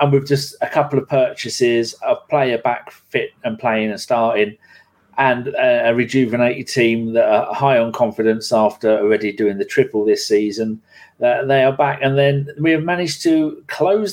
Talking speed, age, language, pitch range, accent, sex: 185 wpm, 40-59, English, 115-180 Hz, British, male